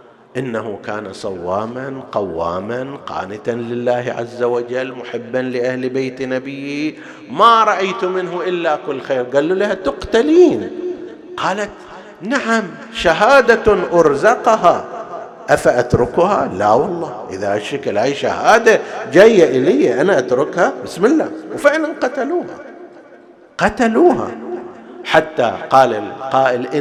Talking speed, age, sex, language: 100 wpm, 50-69, male, Arabic